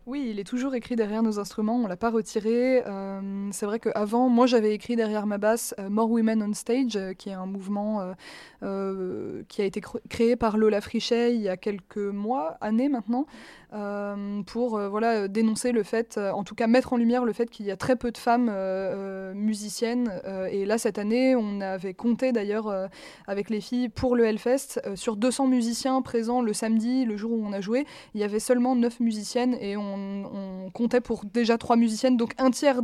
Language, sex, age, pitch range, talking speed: French, female, 20-39, 205-235 Hz, 225 wpm